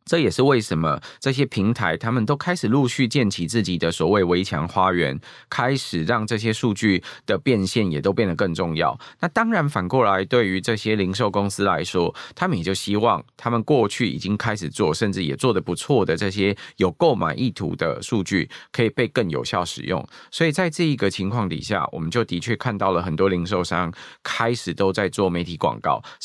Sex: male